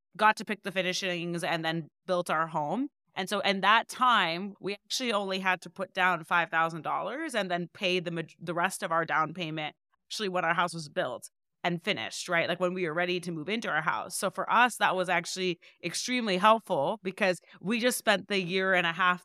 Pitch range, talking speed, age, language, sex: 170-210 Hz, 215 wpm, 20-39, English, female